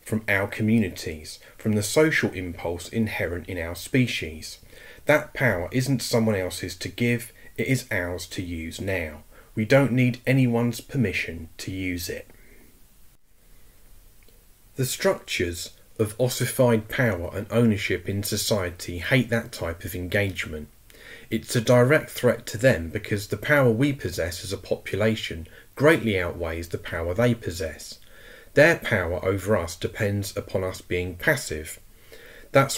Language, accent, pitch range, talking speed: English, British, 90-115 Hz, 140 wpm